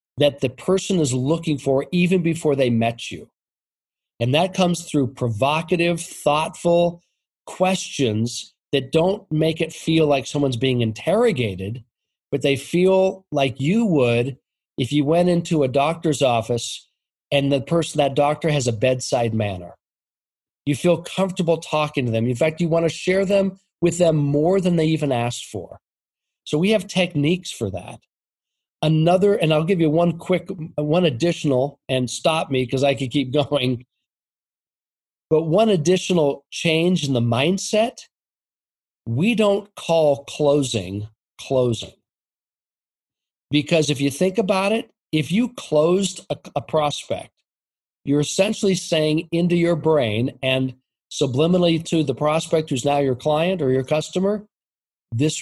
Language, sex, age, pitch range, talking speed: English, male, 40-59, 130-175 Hz, 145 wpm